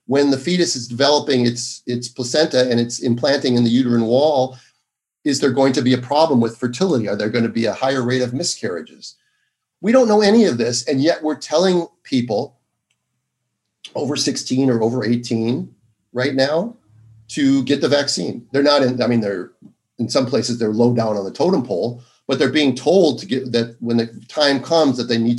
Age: 40-59